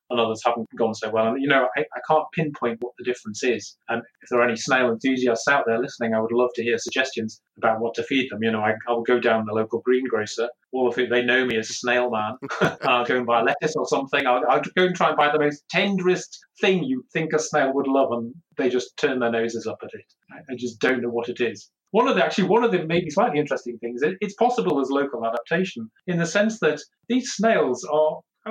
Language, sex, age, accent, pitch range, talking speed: English, male, 30-49, British, 120-155 Hz, 255 wpm